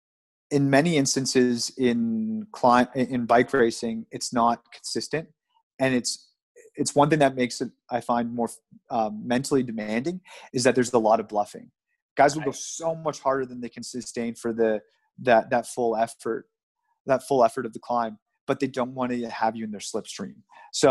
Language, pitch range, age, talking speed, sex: English, 115-135 Hz, 30-49, 185 wpm, male